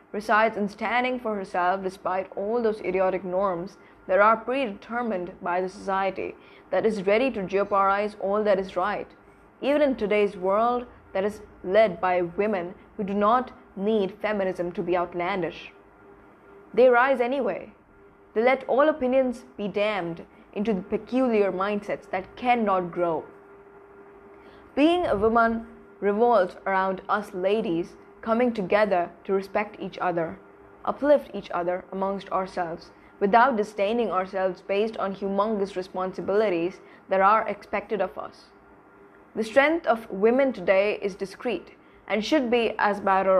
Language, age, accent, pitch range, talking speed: English, 20-39, Indian, 185-225 Hz, 140 wpm